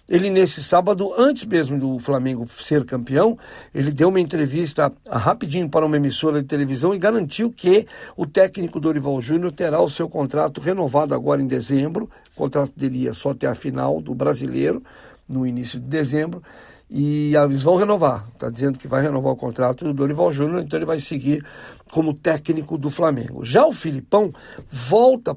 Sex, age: male, 60-79